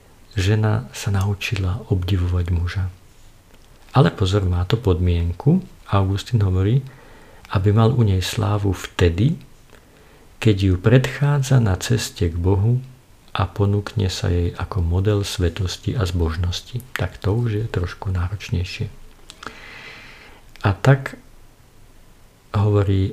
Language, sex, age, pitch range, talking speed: Slovak, male, 50-69, 90-110 Hz, 110 wpm